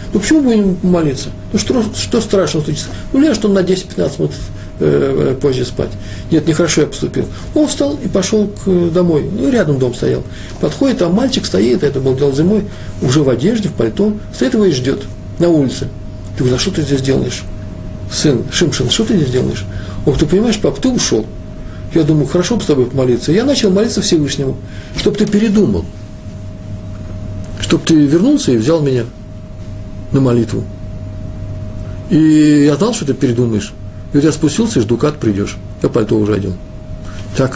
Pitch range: 105-150 Hz